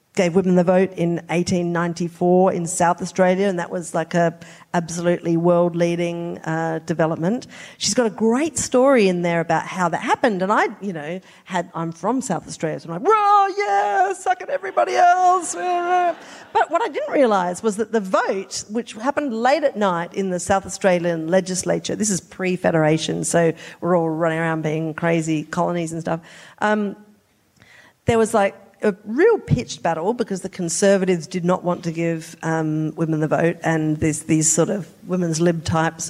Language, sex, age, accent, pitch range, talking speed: English, female, 50-69, Australian, 170-210 Hz, 180 wpm